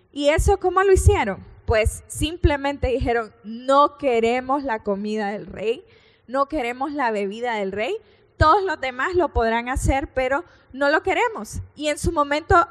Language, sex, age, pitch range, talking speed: Spanish, female, 10-29, 245-335 Hz, 160 wpm